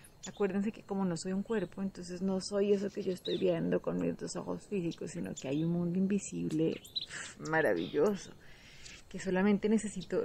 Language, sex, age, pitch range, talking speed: Spanish, female, 30-49, 175-205 Hz, 180 wpm